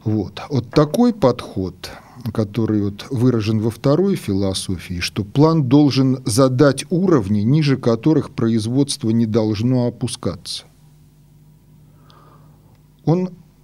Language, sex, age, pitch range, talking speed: Russian, male, 40-59, 110-145 Hz, 90 wpm